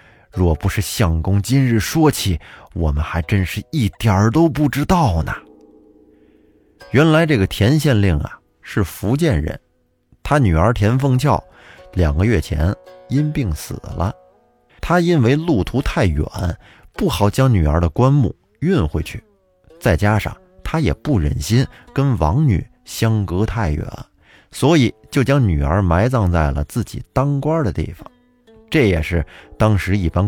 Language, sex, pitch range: Chinese, male, 80-125 Hz